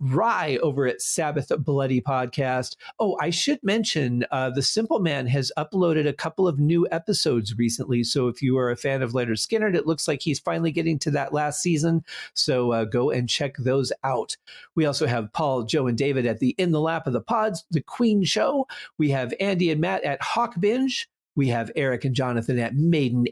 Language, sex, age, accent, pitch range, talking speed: English, male, 40-59, American, 135-200 Hz, 210 wpm